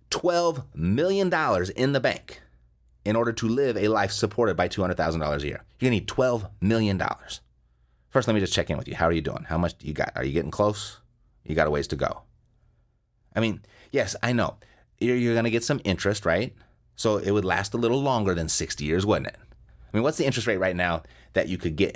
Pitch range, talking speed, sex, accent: 80-115 Hz, 235 wpm, male, American